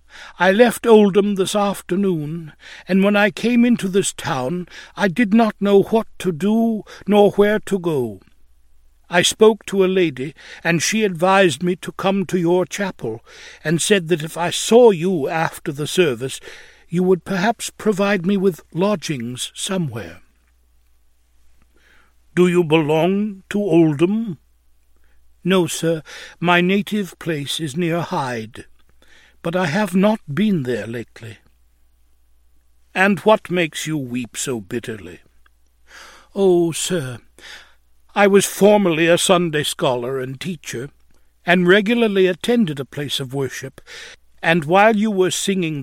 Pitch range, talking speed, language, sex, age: 130-195 Hz, 135 wpm, English, male, 60-79